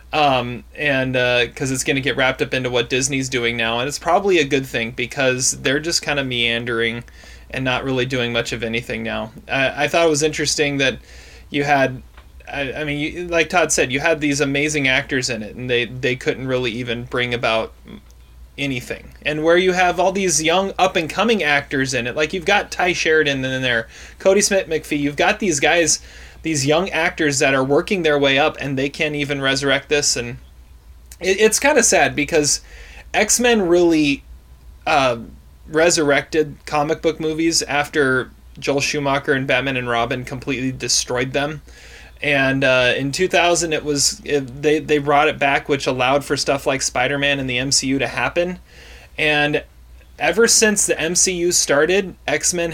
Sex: male